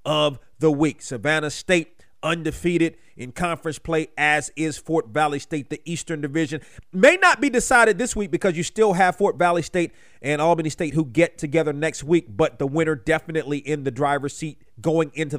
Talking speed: 185 wpm